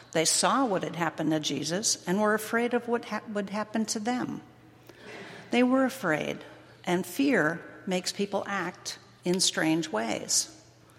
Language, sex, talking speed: English, female, 145 wpm